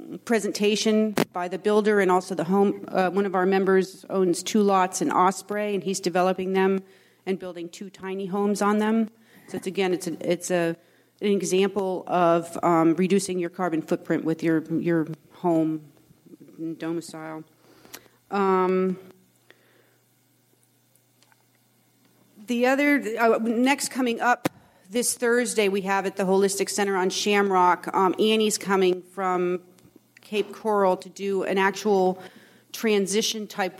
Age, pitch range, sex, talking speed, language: 40-59, 180-215 Hz, female, 135 wpm, English